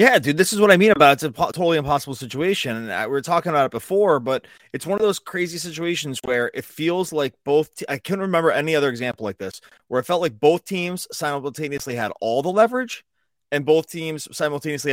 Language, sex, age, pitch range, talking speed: English, male, 30-49, 125-165 Hz, 230 wpm